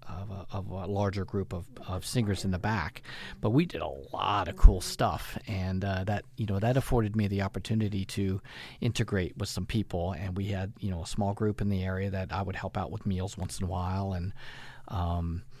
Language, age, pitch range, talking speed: English, 40-59, 95-120 Hz, 225 wpm